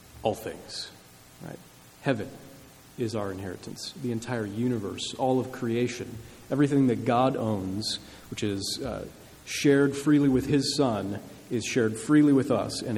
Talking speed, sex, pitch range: 145 wpm, male, 105-135 Hz